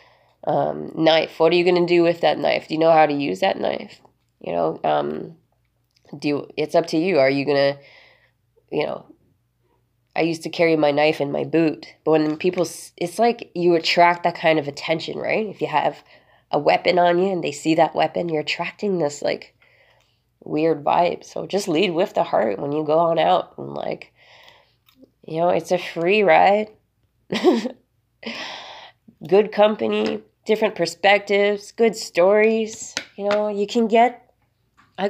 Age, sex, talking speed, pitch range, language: 20-39, female, 175 wpm, 145-175 Hz, English